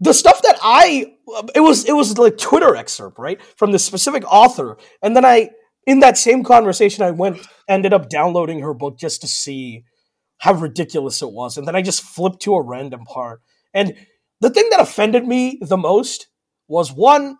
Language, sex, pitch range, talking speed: English, male, 160-245 Hz, 195 wpm